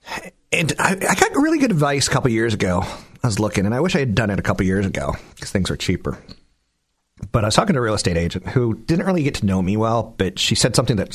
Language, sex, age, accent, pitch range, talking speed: English, male, 40-59, American, 95-125 Hz, 280 wpm